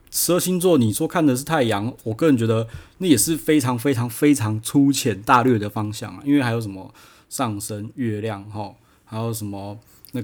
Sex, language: male, Chinese